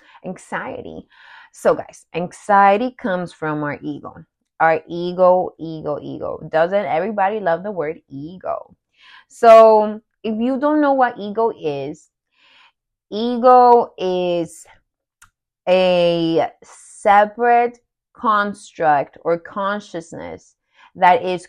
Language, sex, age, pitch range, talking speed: English, female, 20-39, 170-215 Hz, 100 wpm